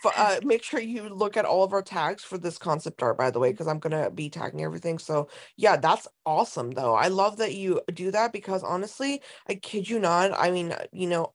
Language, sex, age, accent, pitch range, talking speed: English, female, 20-39, American, 175-215 Hz, 240 wpm